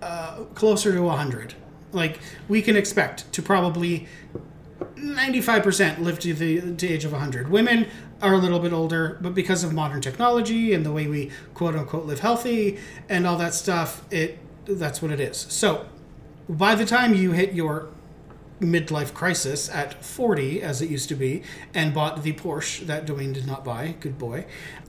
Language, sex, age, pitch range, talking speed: English, male, 30-49, 145-180 Hz, 175 wpm